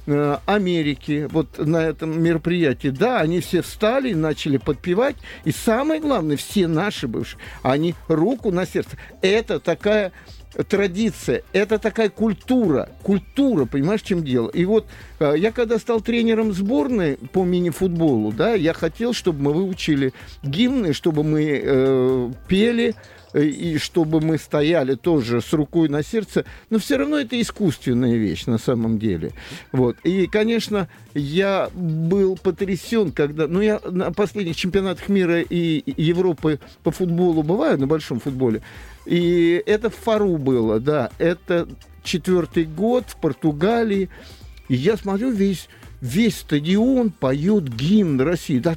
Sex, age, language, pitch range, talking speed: male, 50-69, Russian, 150-205 Hz, 140 wpm